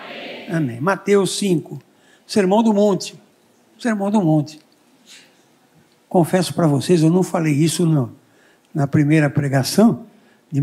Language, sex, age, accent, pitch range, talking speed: Portuguese, male, 60-79, Brazilian, 155-205 Hz, 105 wpm